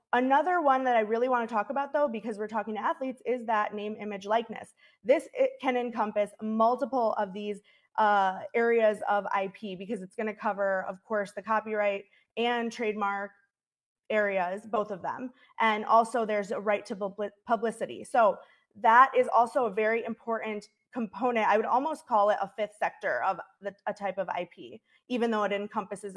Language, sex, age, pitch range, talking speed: English, female, 20-39, 205-240 Hz, 185 wpm